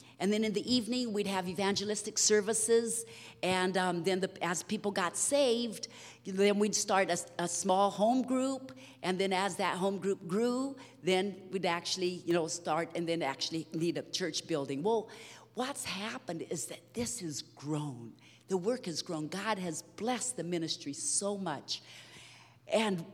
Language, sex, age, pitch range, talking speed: English, female, 50-69, 170-220 Hz, 165 wpm